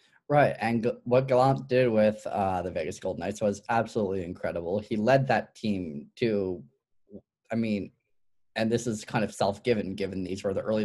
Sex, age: male, 20-39